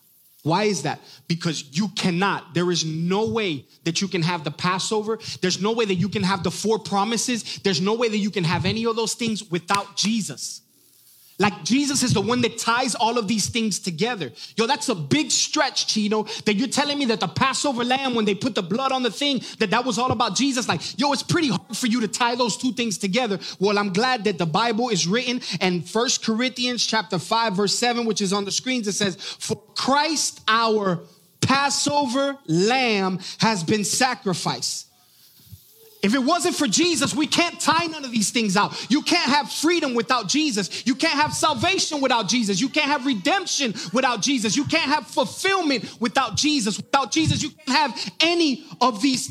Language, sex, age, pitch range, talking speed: English, male, 20-39, 195-265 Hz, 205 wpm